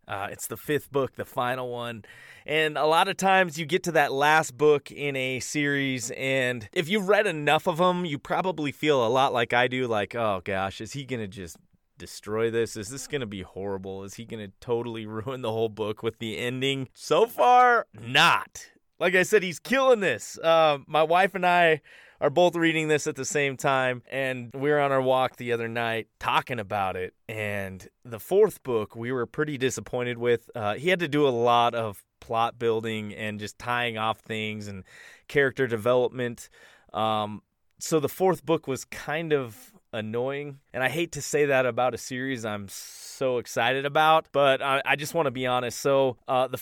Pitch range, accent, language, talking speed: 115-150 Hz, American, English, 205 wpm